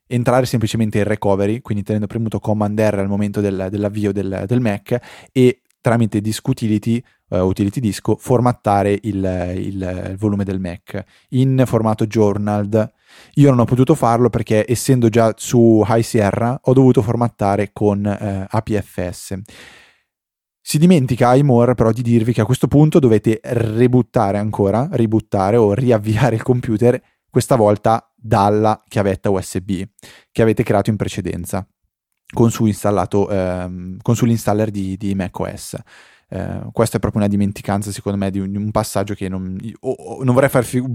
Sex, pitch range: male, 100-120 Hz